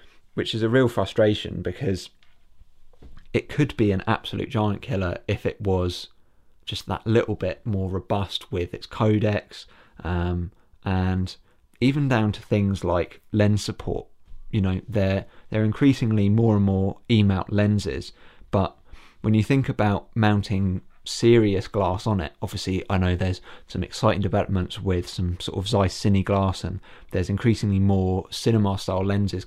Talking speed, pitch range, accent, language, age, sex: 155 wpm, 95-110 Hz, British, English, 30-49, male